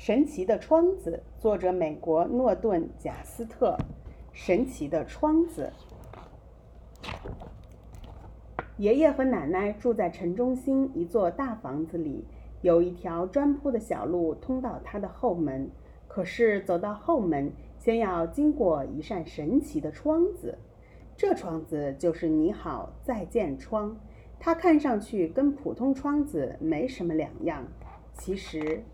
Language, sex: English, female